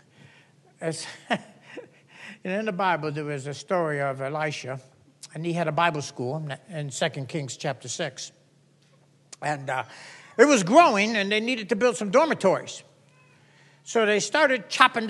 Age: 60-79